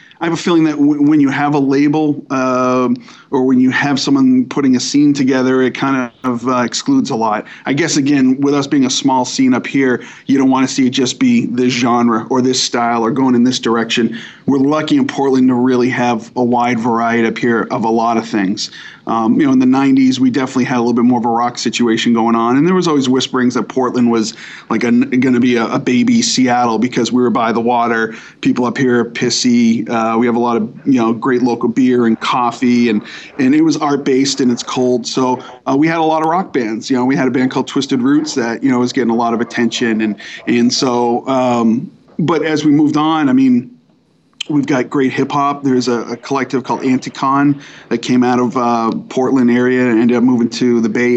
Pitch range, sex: 120-145 Hz, male